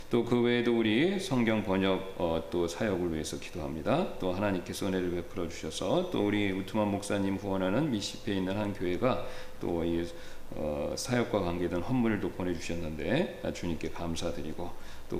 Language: English